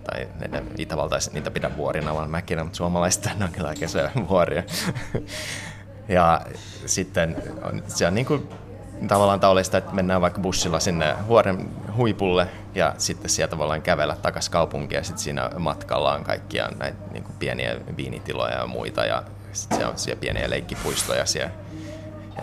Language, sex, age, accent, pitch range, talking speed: Finnish, male, 30-49, native, 85-100 Hz, 155 wpm